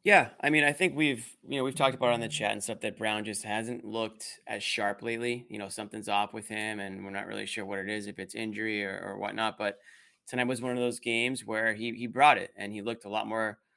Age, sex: 20-39, male